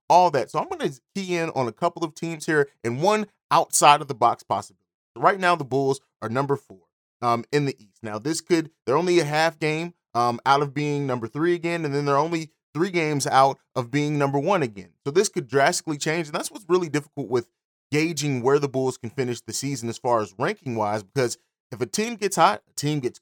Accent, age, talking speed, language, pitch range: American, 30-49, 240 wpm, English, 125-165 Hz